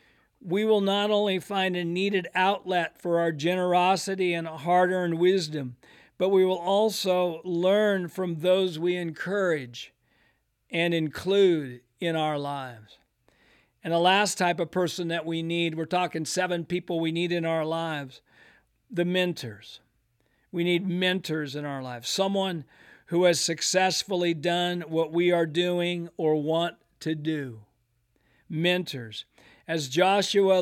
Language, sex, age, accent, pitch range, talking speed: English, male, 50-69, American, 160-185 Hz, 135 wpm